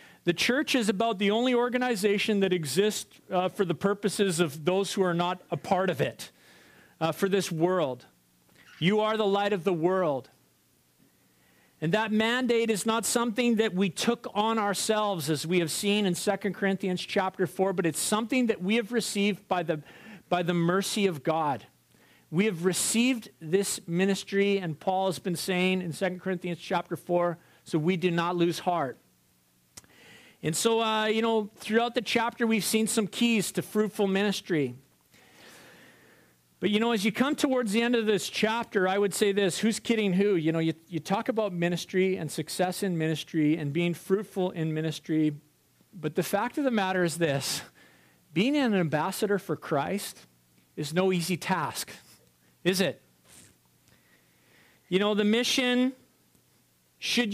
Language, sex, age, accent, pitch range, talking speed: English, male, 40-59, American, 170-215 Hz, 170 wpm